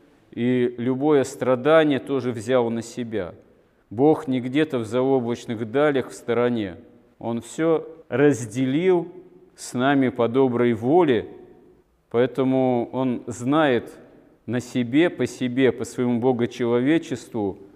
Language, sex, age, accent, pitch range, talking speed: Russian, male, 40-59, native, 120-140 Hz, 110 wpm